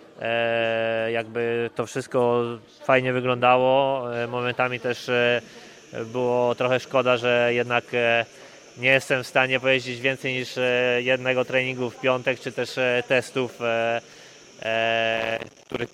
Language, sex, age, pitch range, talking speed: Polish, male, 20-39, 120-130 Hz, 100 wpm